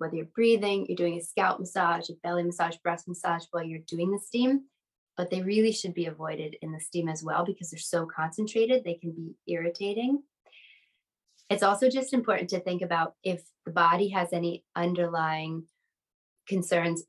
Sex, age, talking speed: female, 20-39, 180 wpm